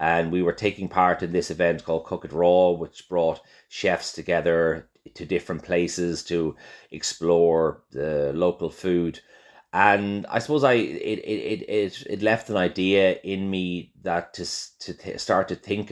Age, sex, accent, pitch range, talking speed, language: 30-49, male, Irish, 80-95 Hz, 160 wpm, English